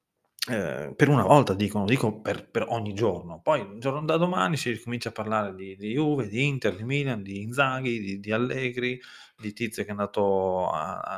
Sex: male